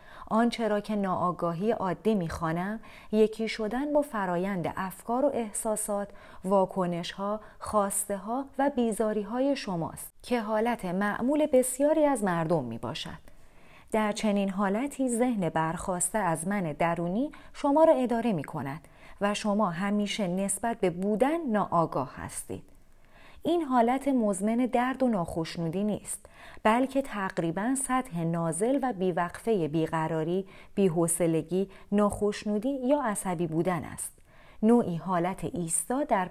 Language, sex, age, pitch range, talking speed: Persian, female, 30-49, 175-245 Hz, 120 wpm